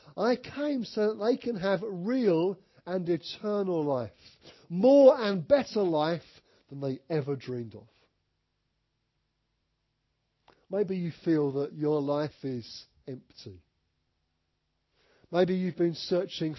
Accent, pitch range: British, 125-180 Hz